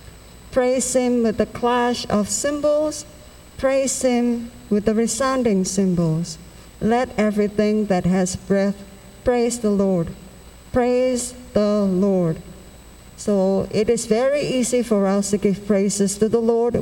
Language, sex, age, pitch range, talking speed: Indonesian, female, 50-69, 190-230 Hz, 130 wpm